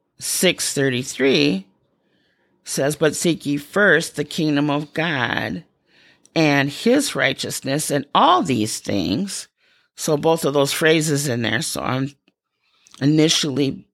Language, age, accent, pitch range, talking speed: English, 40-59, American, 155-225 Hz, 115 wpm